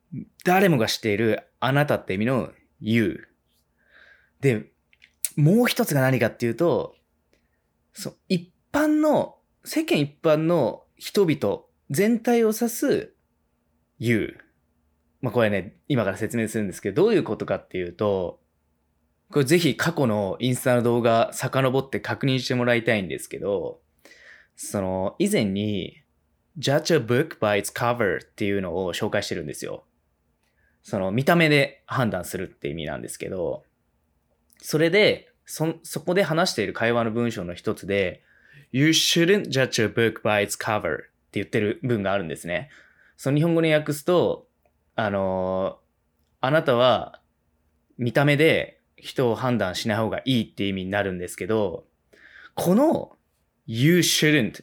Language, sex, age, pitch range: Japanese, male, 20-39, 100-155 Hz